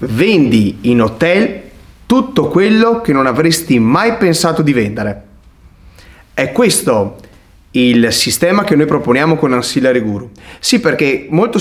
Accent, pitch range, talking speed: native, 120-165 Hz, 130 wpm